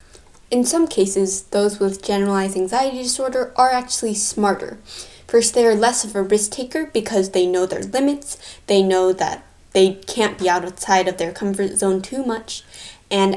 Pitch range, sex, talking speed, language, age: 190-235 Hz, female, 170 wpm, English, 10-29